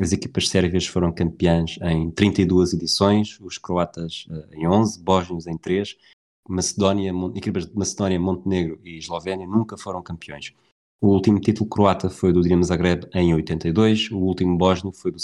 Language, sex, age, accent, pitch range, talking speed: Portuguese, male, 20-39, Portuguese, 85-100 Hz, 155 wpm